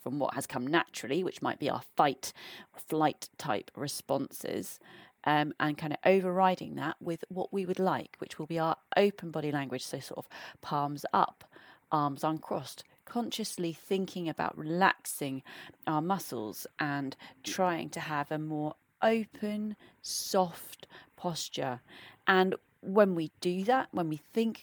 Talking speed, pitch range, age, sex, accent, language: 150 wpm, 150-190 Hz, 30-49, female, British, English